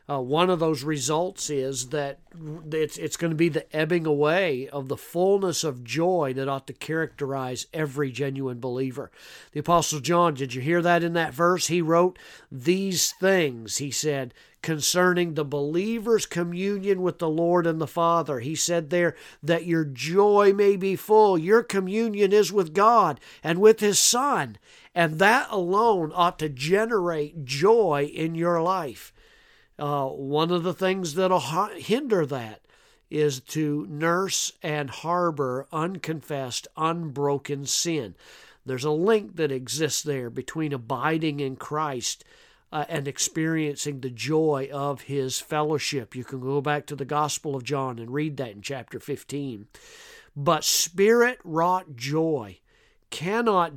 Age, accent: 50-69, American